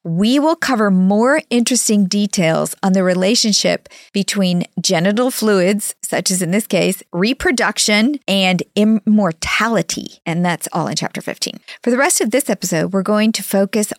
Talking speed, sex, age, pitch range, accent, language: 155 wpm, female, 40-59, 185-255 Hz, American, English